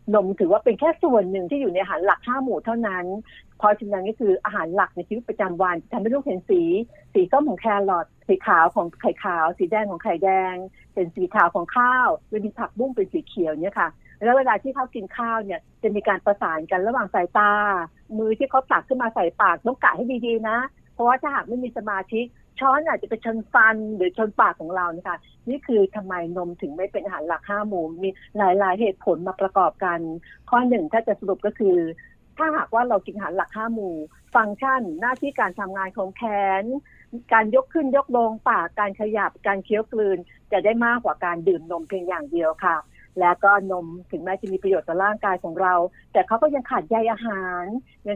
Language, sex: Thai, female